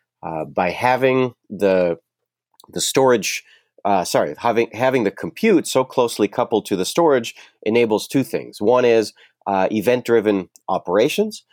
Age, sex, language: 30-49, male, English